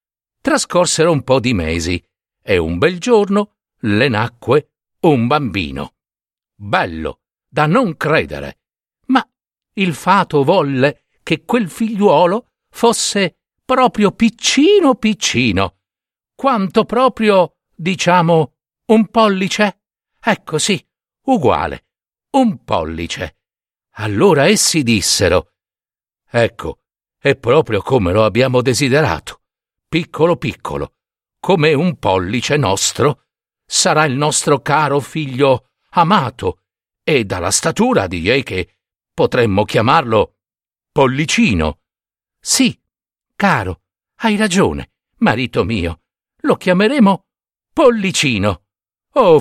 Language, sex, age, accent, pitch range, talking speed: Italian, male, 60-79, native, 125-210 Hz, 95 wpm